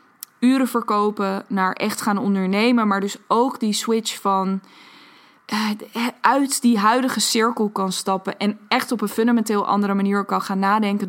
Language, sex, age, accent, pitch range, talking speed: Dutch, female, 20-39, Dutch, 195-235 Hz, 150 wpm